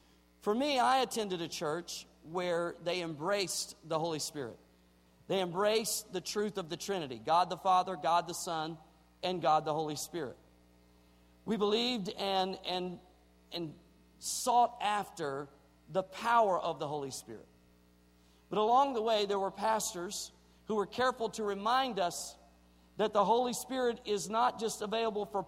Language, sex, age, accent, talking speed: English, male, 50-69, American, 155 wpm